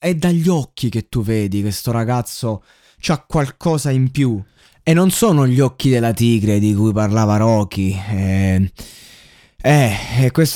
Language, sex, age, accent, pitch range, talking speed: Italian, male, 20-39, native, 115-165 Hz, 160 wpm